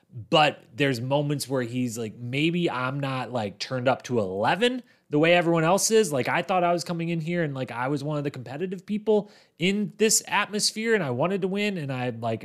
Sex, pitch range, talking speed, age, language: male, 120-170 Hz, 225 wpm, 30-49, English